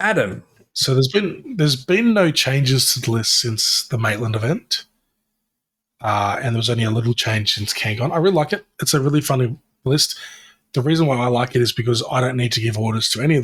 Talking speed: 230 wpm